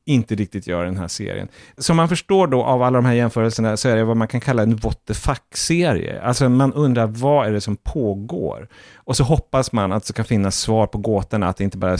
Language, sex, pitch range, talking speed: English, male, 105-135 Hz, 240 wpm